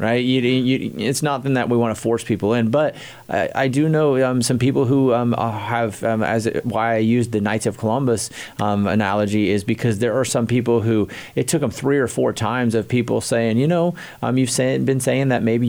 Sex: male